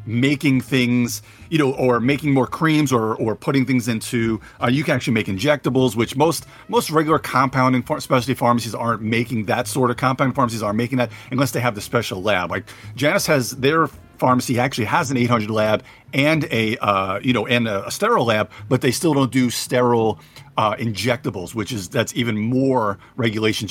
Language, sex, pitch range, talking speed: English, male, 110-135 Hz, 195 wpm